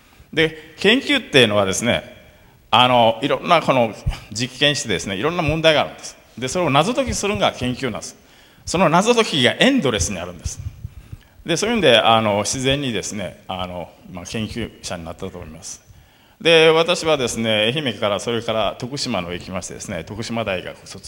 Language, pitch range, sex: Japanese, 105-170 Hz, male